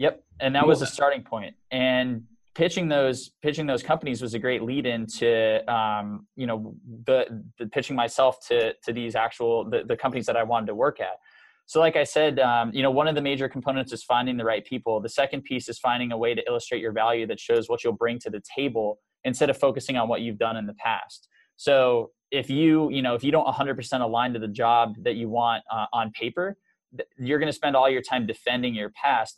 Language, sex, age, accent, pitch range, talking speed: English, male, 20-39, American, 115-140 Hz, 235 wpm